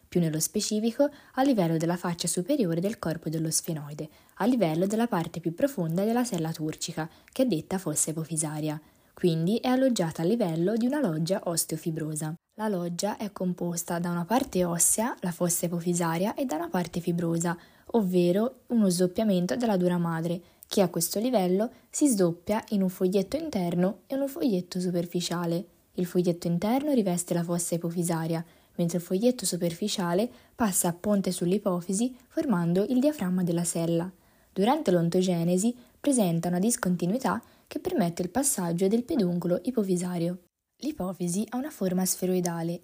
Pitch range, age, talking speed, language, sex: 170-215 Hz, 20-39, 150 wpm, Italian, female